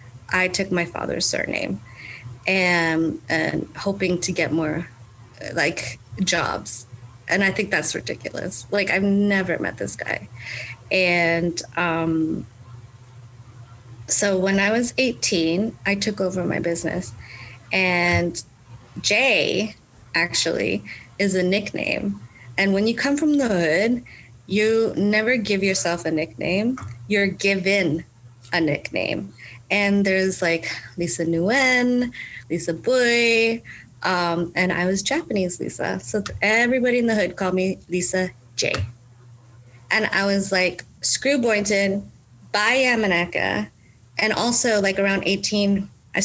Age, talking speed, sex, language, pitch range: 30-49, 125 wpm, female, English, 120-200 Hz